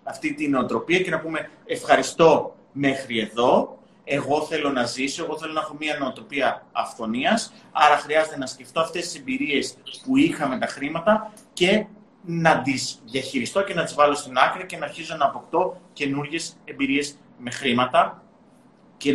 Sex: male